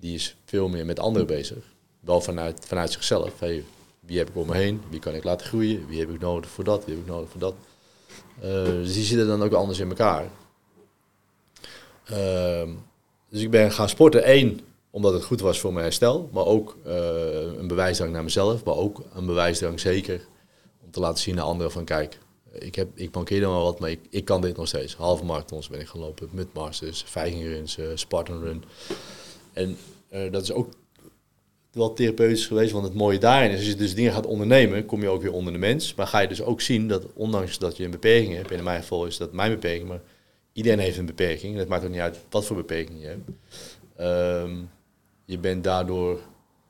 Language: Dutch